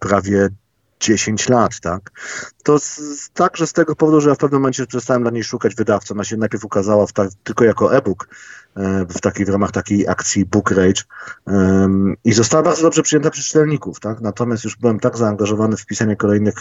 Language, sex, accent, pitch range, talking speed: Polish, male, native, 95-120 Hz, 190 wpm